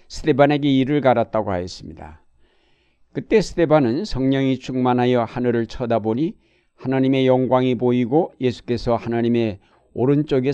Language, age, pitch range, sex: Korean, 60-79, 115-140 Hz, male